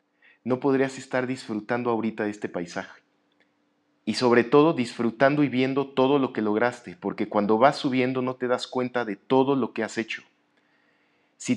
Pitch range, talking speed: 110-135 Hz, 170 wpm